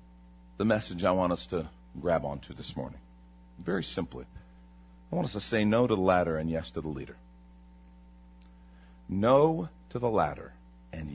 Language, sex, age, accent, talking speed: English, male, 50-69, American, 165 wpm